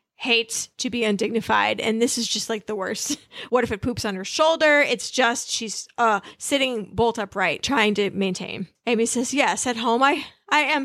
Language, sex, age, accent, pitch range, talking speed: English, female, 30-49, American, 215-280 Hz, 200 wpm